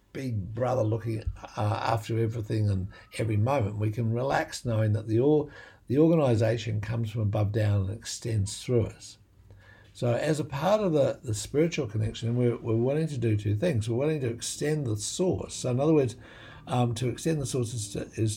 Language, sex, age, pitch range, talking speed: English, male, 60-79, 110-130 Hz, 195 wpm